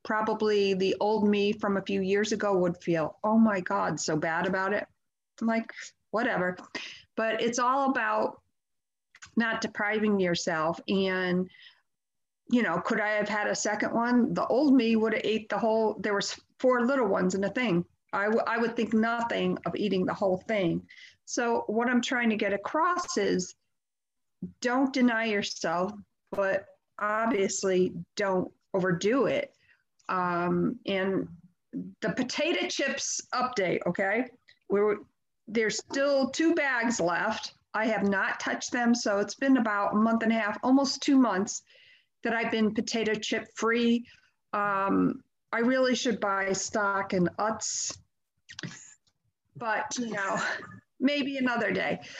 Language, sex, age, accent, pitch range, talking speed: English, female, 50-69, American, 195-245 Hz, 150 wpm